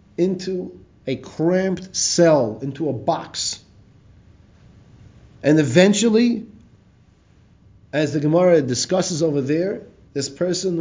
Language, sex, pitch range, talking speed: English, male, 110-180 Hz, 95 wpm